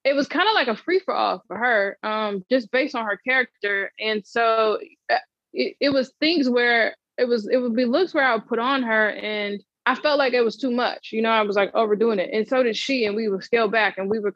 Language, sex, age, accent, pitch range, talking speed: English, female, 20-39, American, 195-245 Hz, 260 wpm